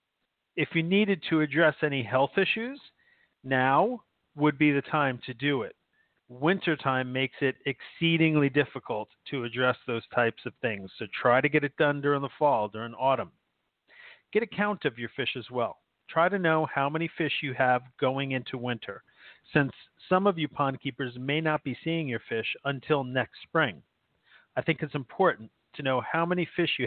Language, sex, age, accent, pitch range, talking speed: English, male, 40-59, American, 130-165 Hz, 185 wpm